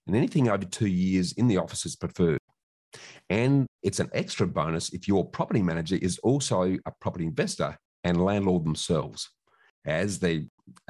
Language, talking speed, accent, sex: English, 160 wpm, Australian, male